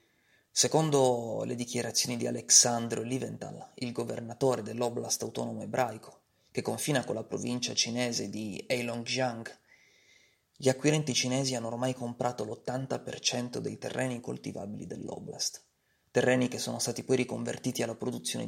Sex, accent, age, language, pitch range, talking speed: male, native, 30-49, Italian, 110-125 Hz, 125 wpm